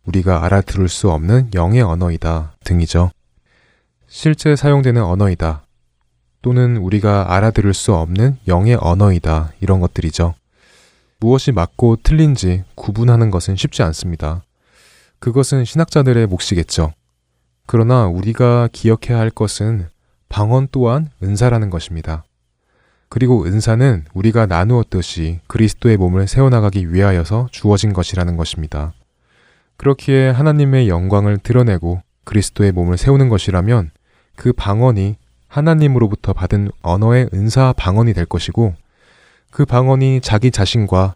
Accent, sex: native, male